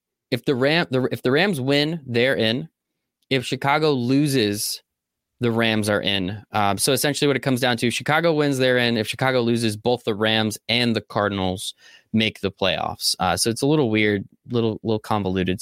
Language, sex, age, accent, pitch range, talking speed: English, male, 20-39, American, 105-135 Hz, 195 wpm